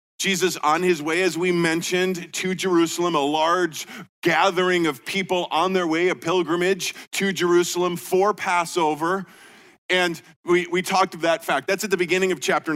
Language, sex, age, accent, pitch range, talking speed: English, male, 40-59, American, 170-200 Hz, 170 wpm